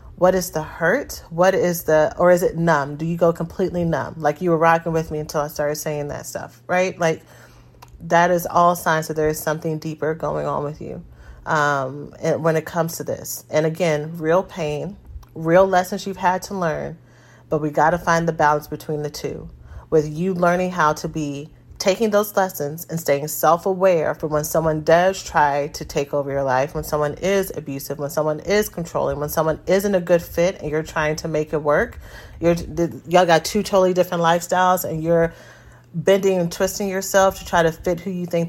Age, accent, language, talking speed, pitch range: 30-49, American, English, 205 wpm, 150-180 Hz